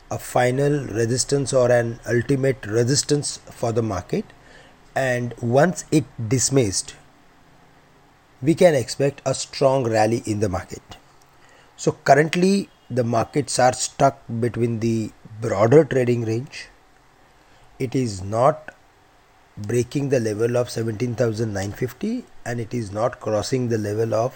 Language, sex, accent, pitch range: English, male, Indian, 115-140 Hz